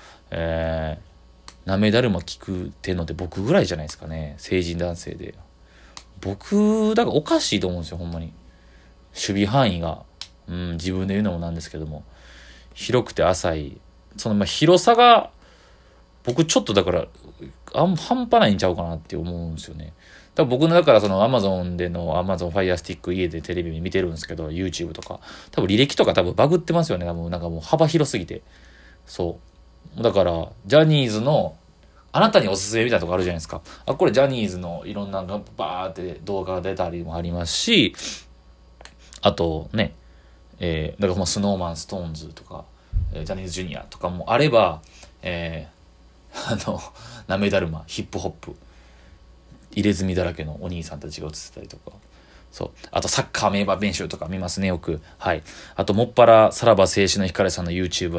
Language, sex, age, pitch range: Japanese, male, 30-49, 80-100 Hz